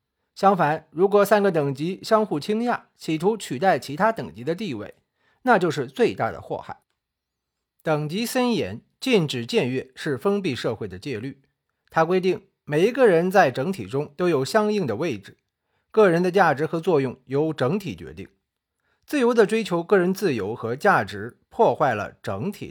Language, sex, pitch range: Chinese, male, 145-205 Hz